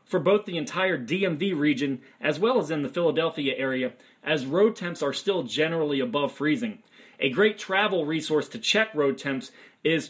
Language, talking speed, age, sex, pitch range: English, 180 wpm, 30-49, male, 140-175 Hz